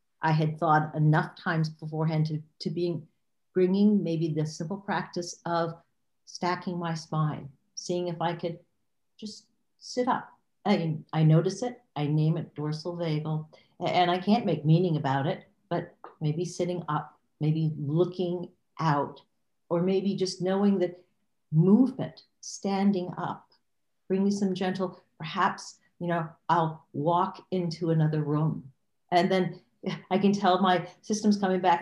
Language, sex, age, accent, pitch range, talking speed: English, female, 50-69, American, 160-190 Hz, 145 wpm